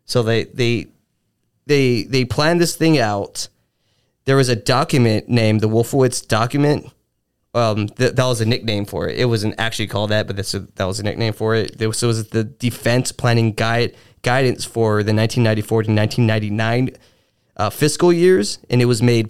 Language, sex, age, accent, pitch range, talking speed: English, male, 20-39, American, 105-125 Hz, 185 wpm